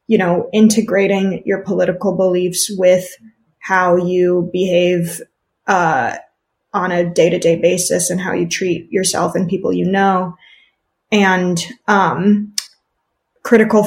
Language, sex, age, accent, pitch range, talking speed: English, female, 20-39, American, 185-210 Hz, 115 wpm